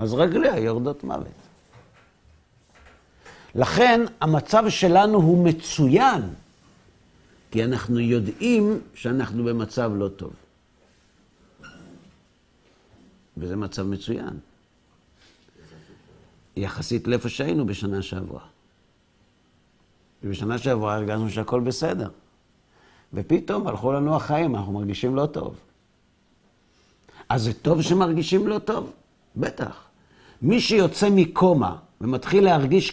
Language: Hebrew